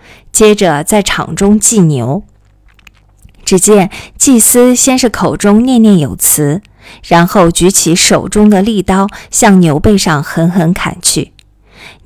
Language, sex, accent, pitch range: Chinese, female, native, 165-215 Hz